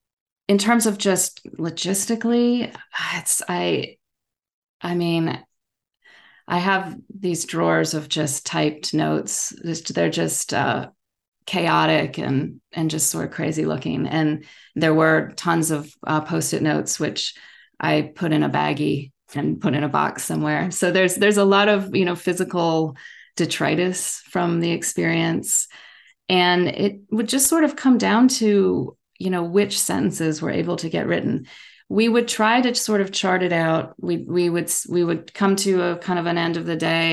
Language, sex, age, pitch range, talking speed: English, female, 30-49, 160-200 Hz, 170 wpm